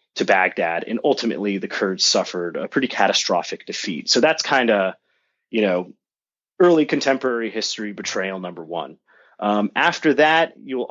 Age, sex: 30-49, male